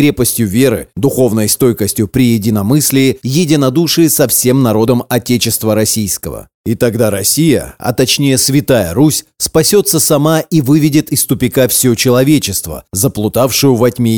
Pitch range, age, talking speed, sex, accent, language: 115-145 Hz, 30-49, 125 wpm, male, native, Russian